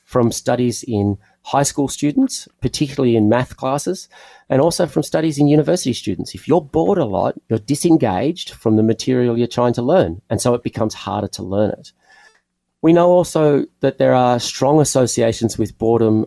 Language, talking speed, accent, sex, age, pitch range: English, 180 wpm, Australian, male, 40-59, 110-135 Hz